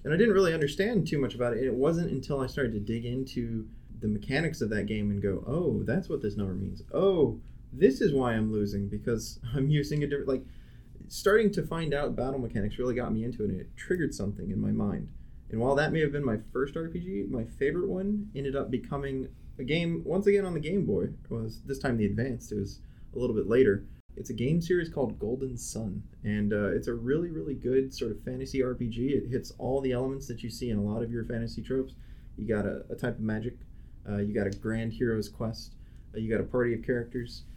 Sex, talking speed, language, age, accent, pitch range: male, 240 wpm, English, 20-39, American, 105-135 Hz